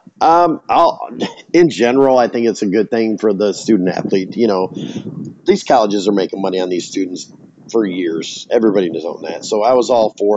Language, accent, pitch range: English, American, 95-115 Hz